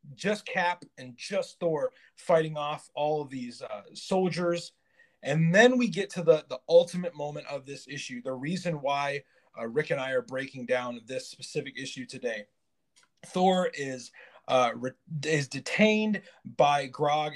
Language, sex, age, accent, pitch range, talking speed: English, male, 30-49, American, 140-185 Hz, 155 wpm